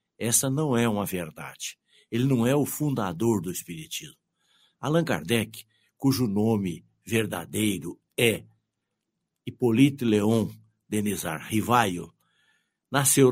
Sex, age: male, 60-79